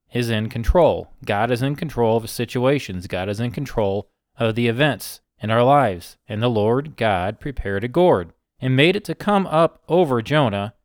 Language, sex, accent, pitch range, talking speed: English, male, American, 115-145 Hz, 190 wpm